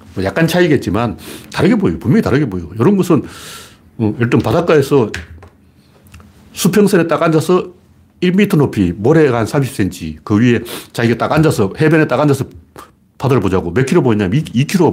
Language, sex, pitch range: Korean, male, 100-160 Hz